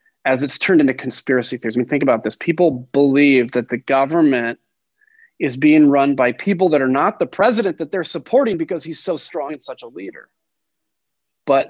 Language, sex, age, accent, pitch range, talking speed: English, male, 30-49, American, 135-185 Hz, 195 wpm